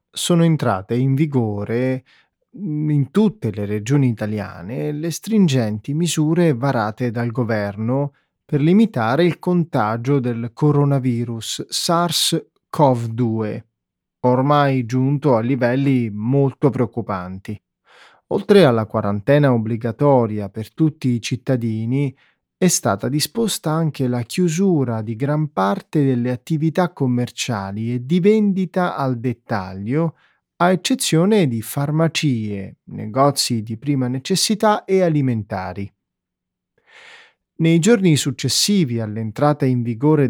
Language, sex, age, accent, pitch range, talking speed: Italian, male, 20-39, native, 120-160 Hz, 105 wpm